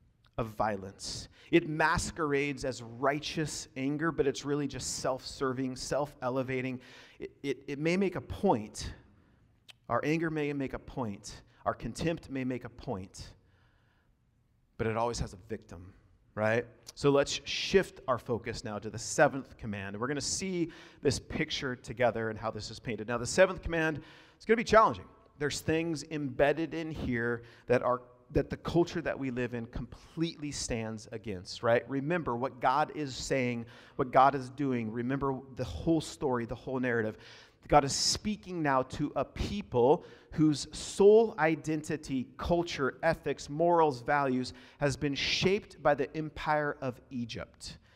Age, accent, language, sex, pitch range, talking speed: 40-59, American, English, male, 115-155 Hz, 160 wpm